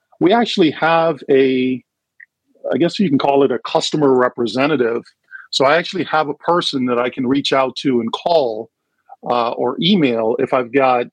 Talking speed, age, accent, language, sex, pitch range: 180 wpm, 50-69, American, English, male, 125-155 Hz